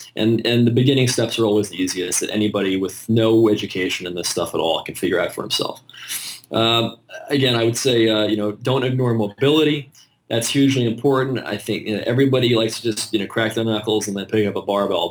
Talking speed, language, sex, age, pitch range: 225 wpm, English, male, 20-39, 105-120 Hz